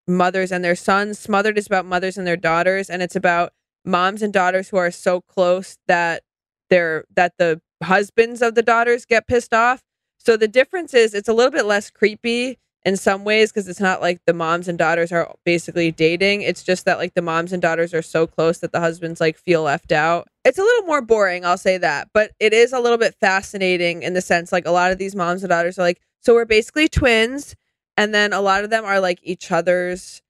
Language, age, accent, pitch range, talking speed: English, 20-39, American, 175-220 Hz, 230 wpm